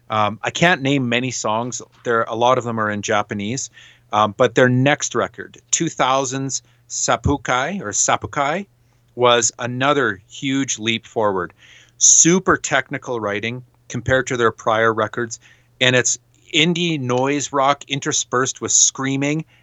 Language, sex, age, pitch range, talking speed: English, male, 40-59, 115-140 Hz, 135 wpm